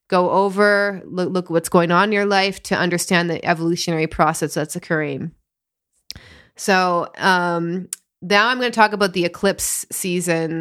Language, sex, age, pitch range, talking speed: English, female, 20-39, 170-195 Hz, 160 wpm